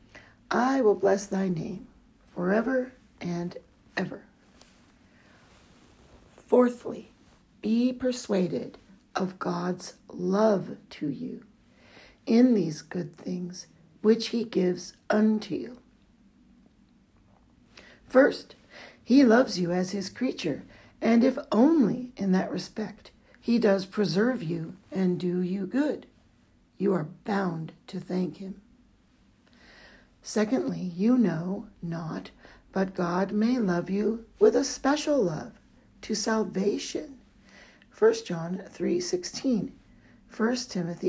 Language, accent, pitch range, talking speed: English, American, 180-235 Hz, 105 wpm